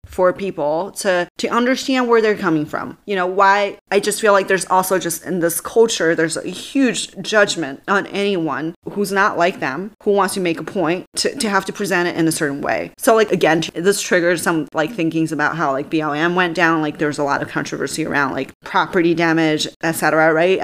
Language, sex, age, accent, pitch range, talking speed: English, female, 20-39, American, 155-195 Hz, 215 wpm